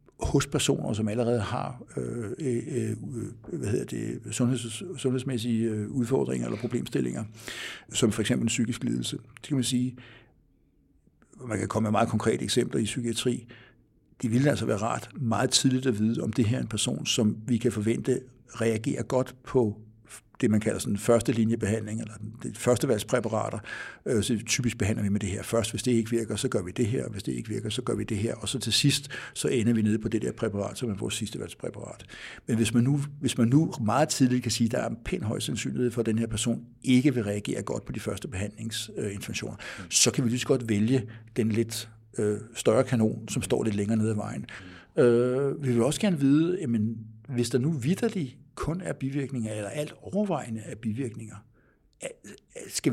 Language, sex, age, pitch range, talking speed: Danish, male, 60-79, 110-130 Hz, 200 wpm